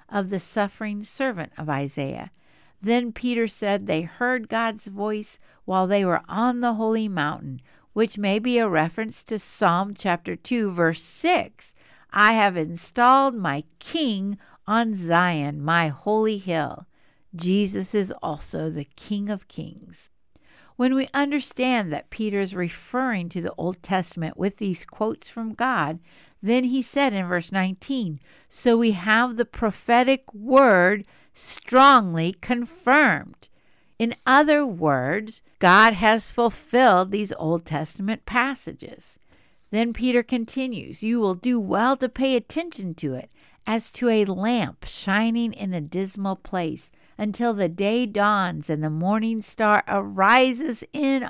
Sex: female